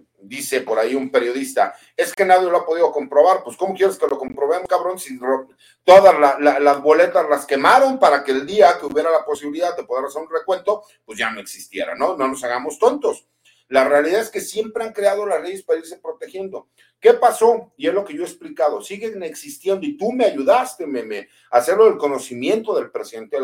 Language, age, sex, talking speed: Spanish, 50-69, male, 215 wpm